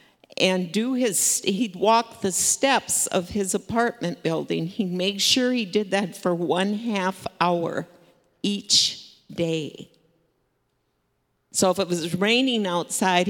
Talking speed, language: 130 wpm, English